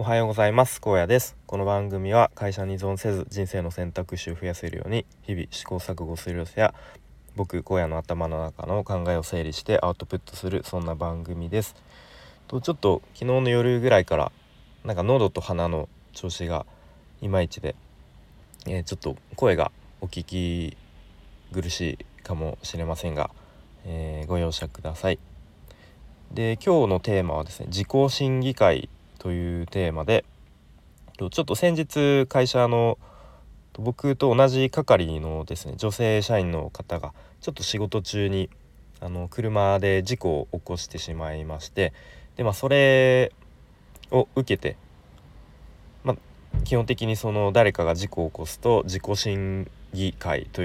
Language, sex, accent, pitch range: Japanese, male, native, 85-110 Hz